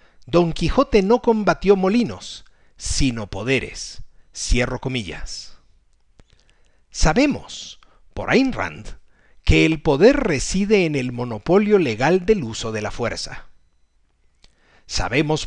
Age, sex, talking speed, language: 50-69, male, 105 wpm, Spanish